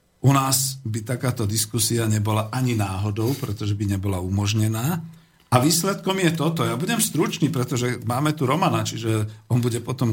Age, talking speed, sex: 50-69, 160 wpm, male